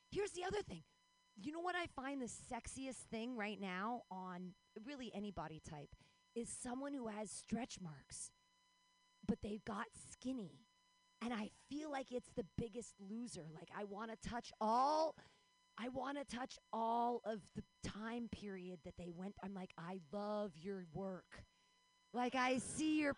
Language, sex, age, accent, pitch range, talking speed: English, female, 30-49, American, 195-270 Hz, 165 wpm